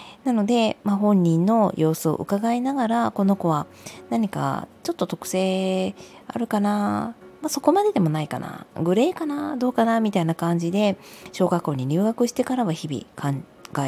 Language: Japanese